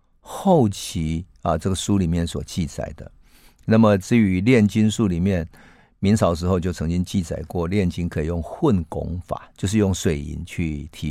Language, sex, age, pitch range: Chinese, male, 50-69, 85-110 Hz